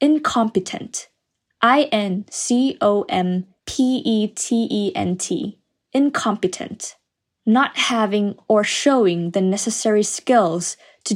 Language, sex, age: Thai, female, 10-29